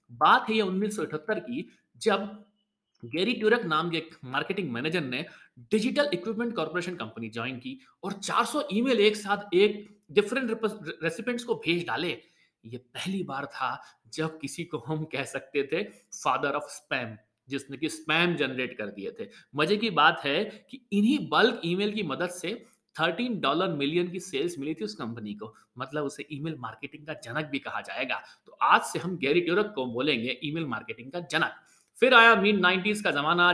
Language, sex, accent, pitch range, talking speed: Hindi, male, native, 150-220 Hz, 170 wpm